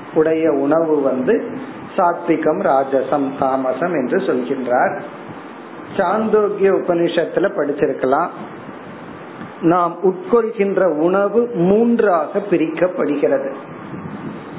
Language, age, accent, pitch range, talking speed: Tamil, 50-69, native, 165-210 Hz, 60 wpm